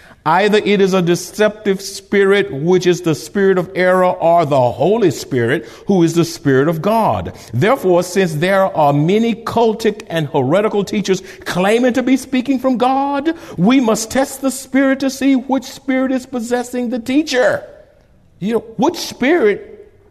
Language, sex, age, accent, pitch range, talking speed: English, male, 60-79, American, 190-265 Hz, 160 wpm